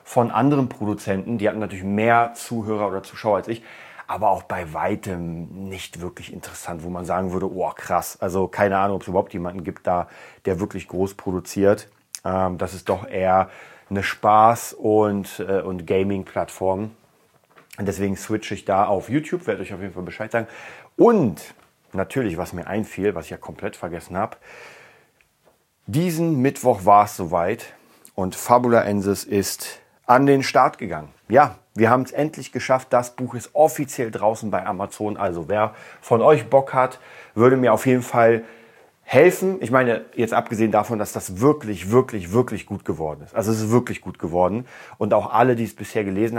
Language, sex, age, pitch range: German, male, 30-49, 95-120 Hz